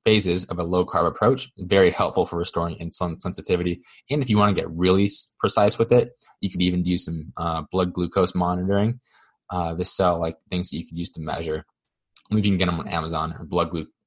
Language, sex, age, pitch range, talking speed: English, male, 20-39, 85-110 Hz, 220 wpm